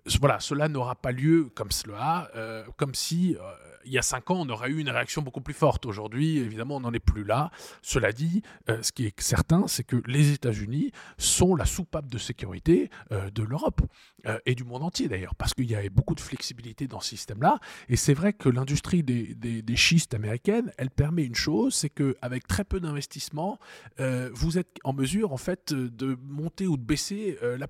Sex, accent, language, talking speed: male, French, French, 215 wpm